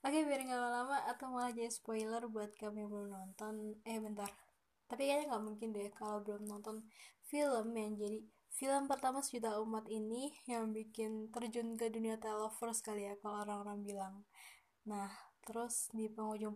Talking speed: 165 wpm